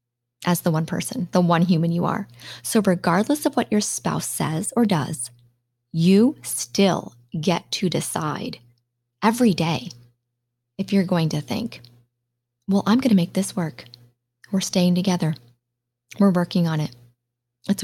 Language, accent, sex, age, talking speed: English, American, female, 20-39, 150 wpm